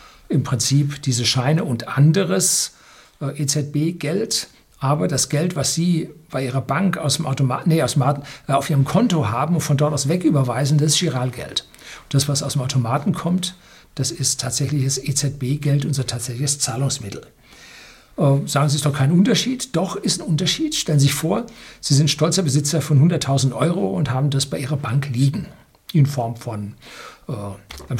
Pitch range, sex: 135-165 Hz, male